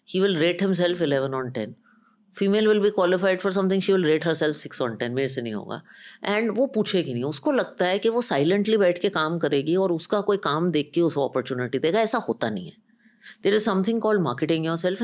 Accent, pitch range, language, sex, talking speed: native, 145-220 Hz, Hindi, female, 245 wpm